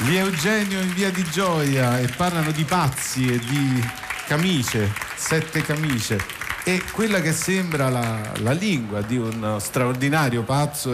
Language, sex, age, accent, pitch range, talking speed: Italian, male, 50-69, native, 125-155 Hz, 145 wpm